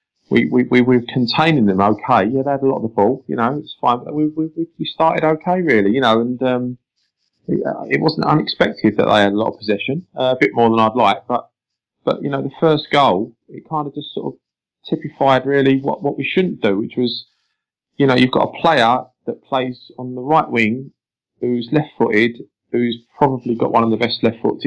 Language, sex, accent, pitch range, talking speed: English, male, British, 120-150 Hz, 225 wpm